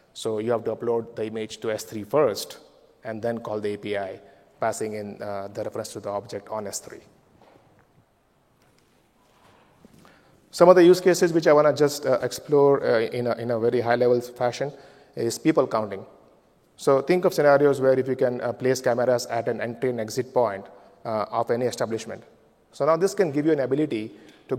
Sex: male